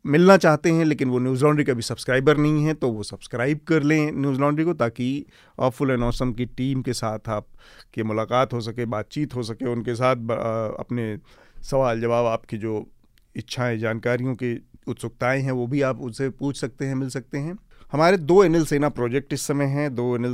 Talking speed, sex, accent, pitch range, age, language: 200 wpm, male, native, 115-135 Hz, 40-59, Hindi